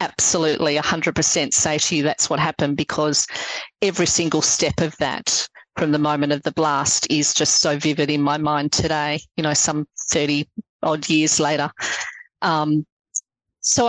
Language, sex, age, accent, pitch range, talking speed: English, female, 40-59, Australian, 155-170 Hz, 170 wpm